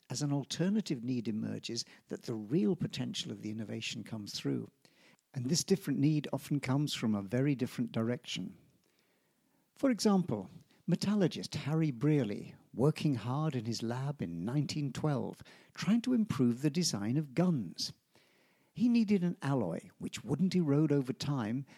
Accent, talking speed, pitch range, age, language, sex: British, 145 wpm, 130-180 Hz, 60-79, English, male